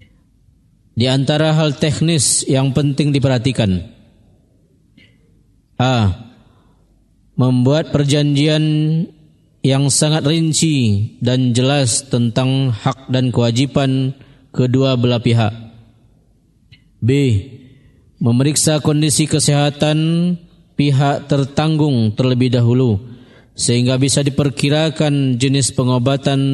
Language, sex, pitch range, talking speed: Indonesian, male, 120-145 Hz, 80 wpm